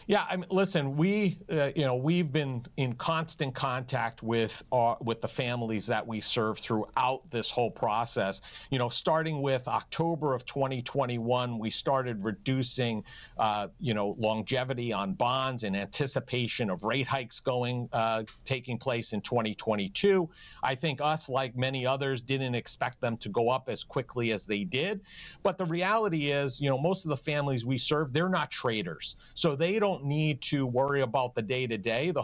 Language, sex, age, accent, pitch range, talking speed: English, male, 50-69, American, 120-155 Hz, 175 wpm